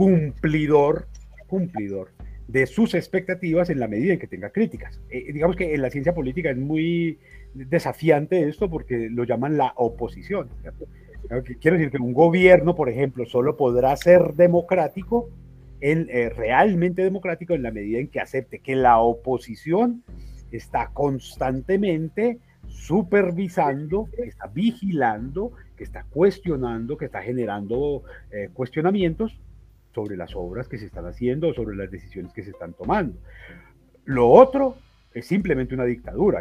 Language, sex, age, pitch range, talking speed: Spanish, male, 40-59, 115-170 Hz, 145 wpm